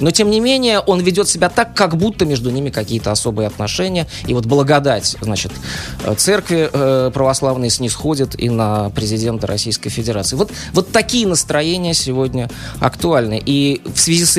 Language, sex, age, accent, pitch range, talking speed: Russian, male, 20-39, native, 110-150 Hz, 155 wpm